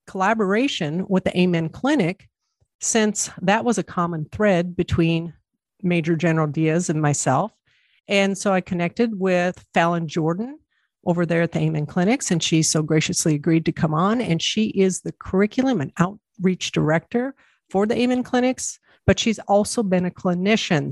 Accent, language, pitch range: American, English, 165-200 Hz